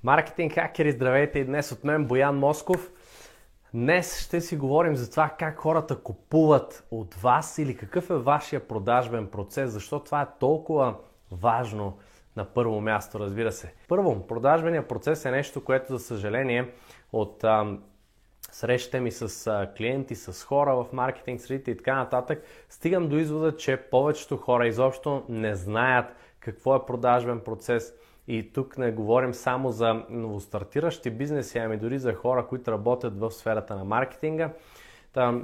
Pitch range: 115-145 Hz